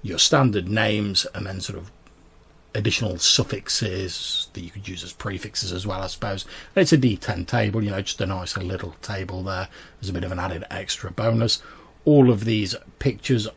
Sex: male